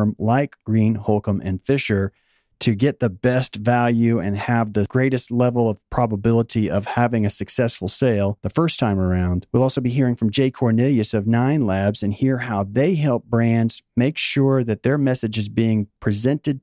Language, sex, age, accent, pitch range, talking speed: English, male, 40-59, American, 105-130 Hz, 180 wpm